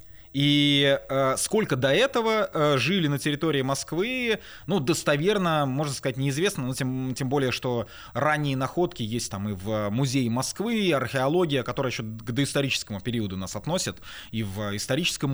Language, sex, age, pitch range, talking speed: Russian, male, 20-39, 110-160 Hz, 150 wpm